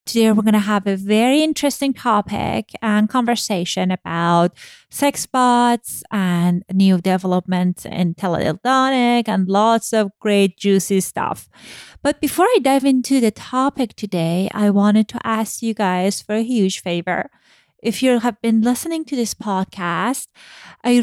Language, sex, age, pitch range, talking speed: English, female, 30-49, 190-235 Hz, 150 wpm